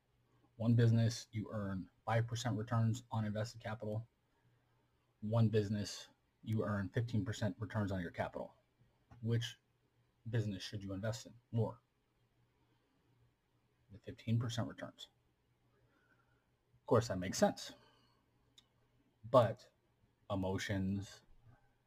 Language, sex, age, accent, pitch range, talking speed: English, male, 30-49, American, 95-115 Hz, 95 wpm